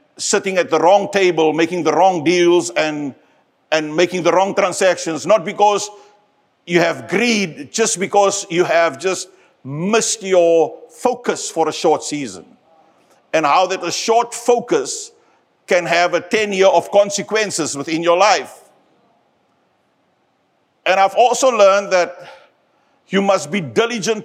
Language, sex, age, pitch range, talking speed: English, male, 50-69, 175-205 Hz, 140 wpm